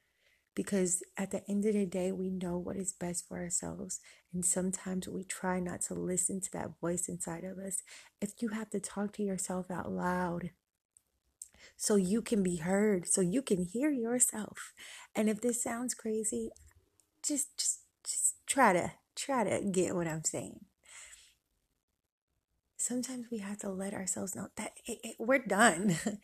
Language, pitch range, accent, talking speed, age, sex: English, 180-210 Hz, American, 170 wpm, 30-49, female